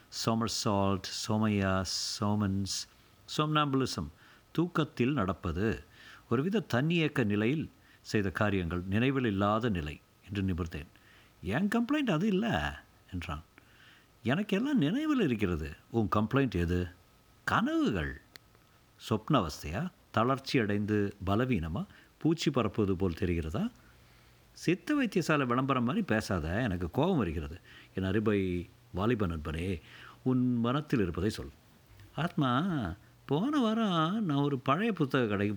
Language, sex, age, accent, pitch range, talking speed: Tamil, male, 50-69, native, 95-135 Hz, 105 wpm